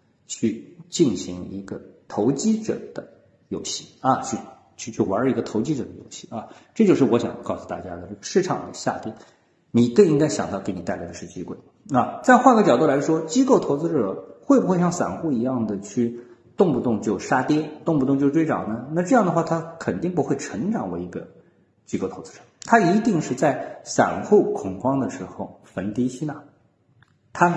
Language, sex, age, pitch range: Chinese, male, 50-69, 120-190 Hz